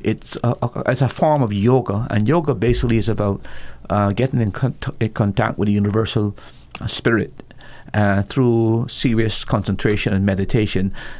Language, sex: English, male